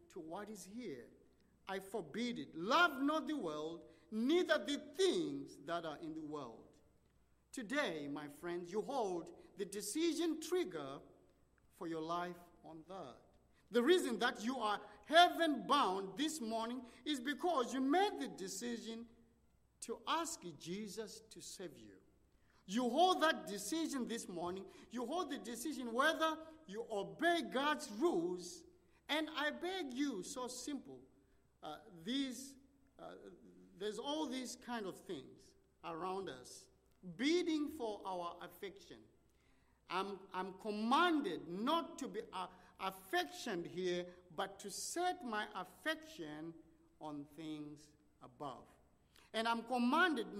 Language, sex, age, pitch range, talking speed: English, male, 50-69, 190-315 Hz, 130 wpm